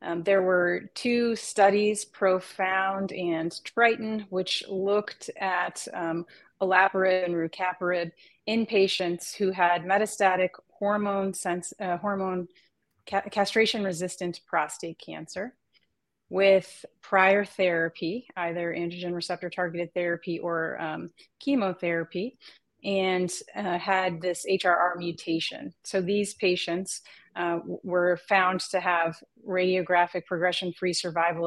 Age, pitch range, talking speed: 30-49, 175-195 Hz, 110 wpm